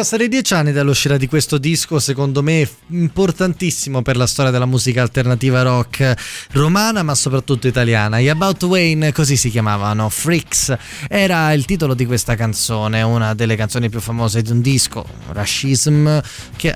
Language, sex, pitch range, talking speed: Italian, male, 120-145 Hz, 160 wpm